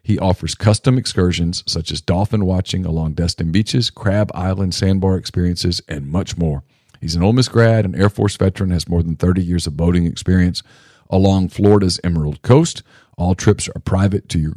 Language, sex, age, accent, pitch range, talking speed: English, male, 40-59, American, 90-110 Hz, 185 wpm